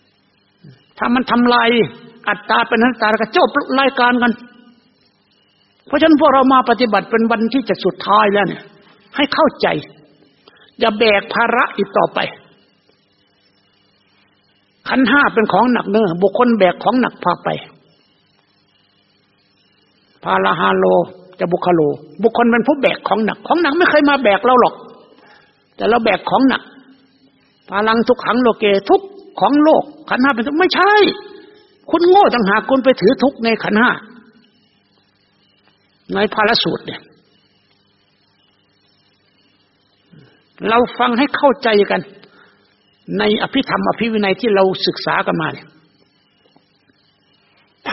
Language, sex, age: Thai, male, 60-79